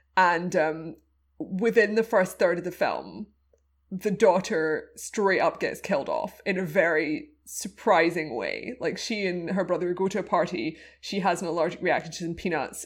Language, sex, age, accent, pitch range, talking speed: English, female, 20-39, British, 160-190 Hz, 175 wpm